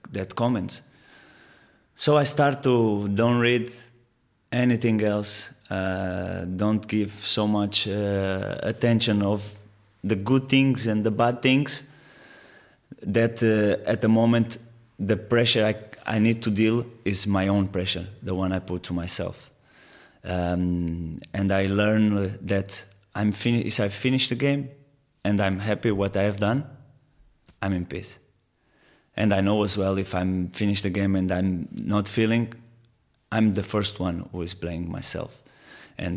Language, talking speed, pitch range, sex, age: Danish, 150 wpm, 95-115 Hz, male, 20-39